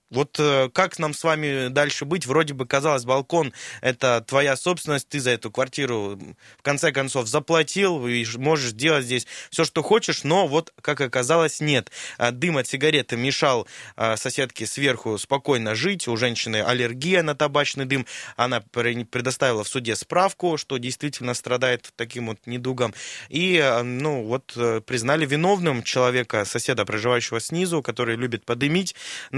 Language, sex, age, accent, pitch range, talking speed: Russian, male, 20-39, native, 120-150 Hz, 145 wpm